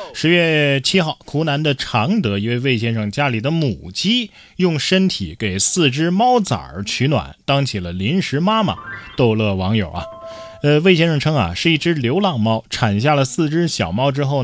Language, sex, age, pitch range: Chinese, male, 20-39, 110-165 Hz